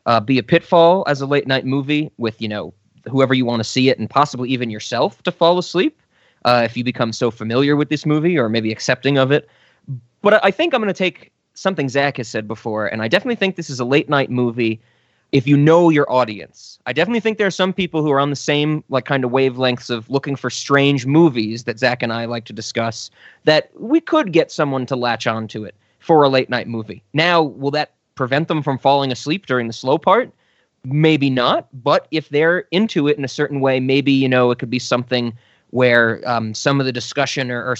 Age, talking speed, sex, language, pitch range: 20-39, 235 wpm, male, English, 120-155 Hz